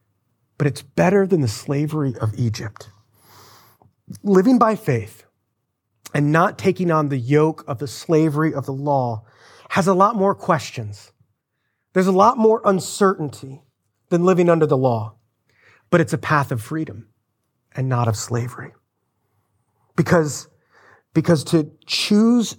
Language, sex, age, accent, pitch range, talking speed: English, male, 30-49, American, 115-175 Hz, 140 wpm